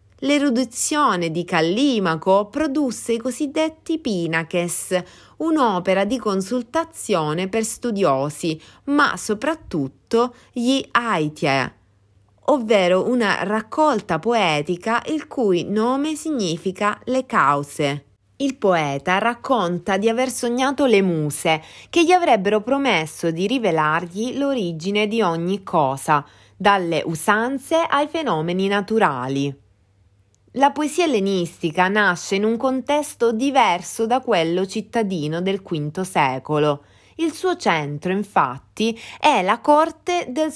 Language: Italian